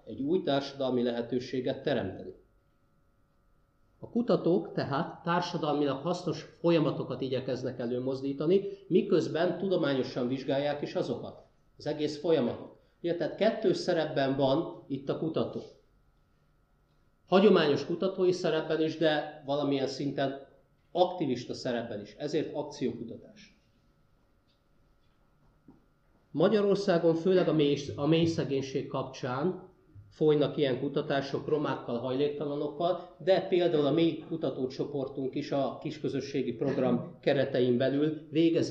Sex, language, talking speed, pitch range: male, Hungarian, 95 wpm, 125-160 Hz